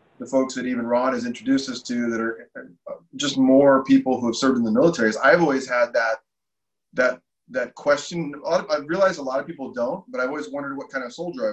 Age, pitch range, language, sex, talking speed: 20-39, 120-205 Hz, English, male, 240 wpm